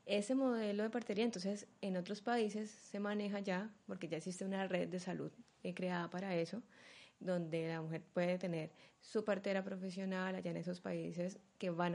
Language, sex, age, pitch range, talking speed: Spanish, female, 20-39, 170-200 Hz, 175 wpm